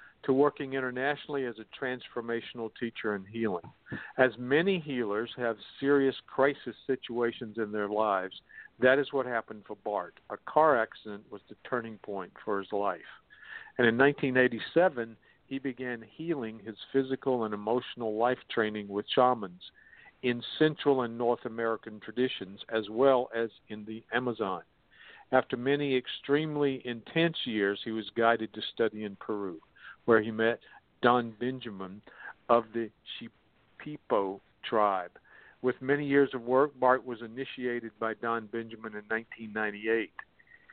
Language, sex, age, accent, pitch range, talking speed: English, male, 50-69, American, 110-135 Hz, 140 wpm